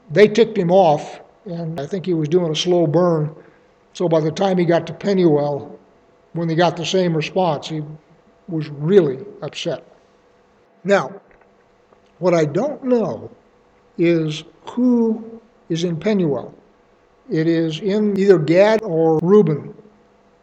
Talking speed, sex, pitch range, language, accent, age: 140 wpm, male, 165-200 Hz, English, American, 60-79